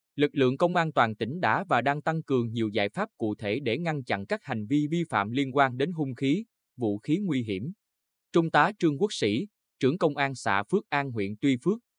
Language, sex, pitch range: Vietnamese, male, 110-155 Hz